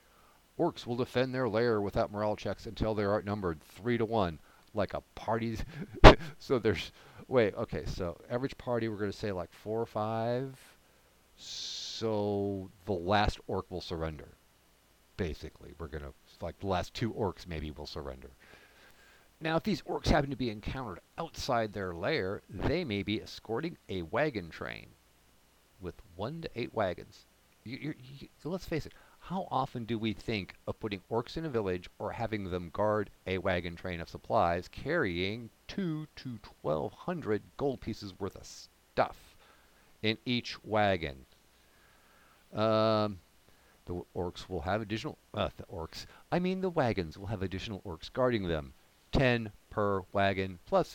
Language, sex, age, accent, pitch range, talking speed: English, male, 50-69, American, 90-120 Hz, 160 wpm